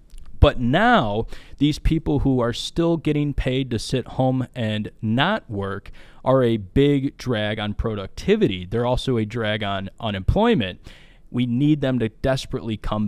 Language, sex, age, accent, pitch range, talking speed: English, male, 20-39, American, 105-140 Hz, 150 wpm